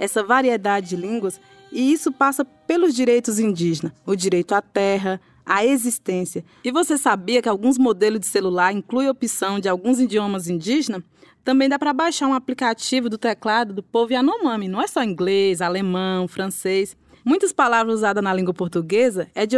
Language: Portuguese